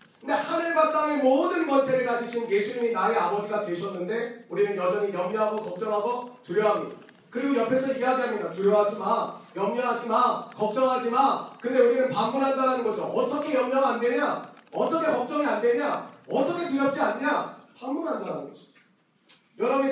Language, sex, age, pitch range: Korean, male, 40-59, 205-265 Hz